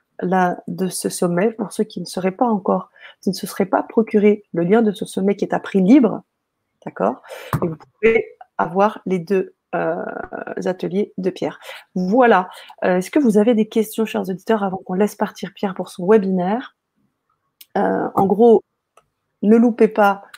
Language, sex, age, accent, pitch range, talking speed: French, female, 30-49, French, 190-225 Hz, 185 wpm